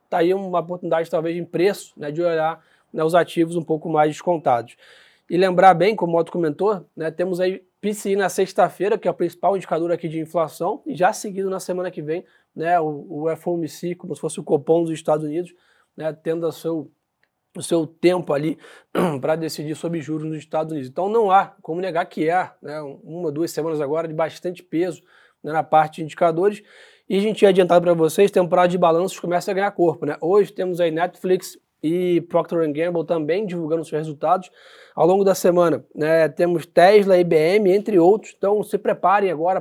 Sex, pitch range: male, 160-185 Hz